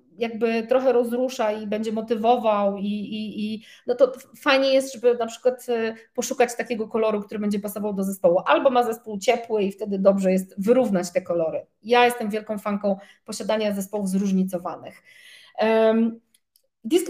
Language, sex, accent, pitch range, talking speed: Polish, female, native, 215-260 Hz, 150 wpm